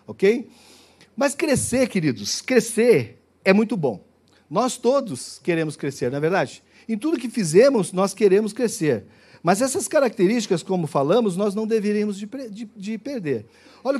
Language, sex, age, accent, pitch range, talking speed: Portuguese, male, 50-69, Brazilian, 165-240 Hz, 150 wpm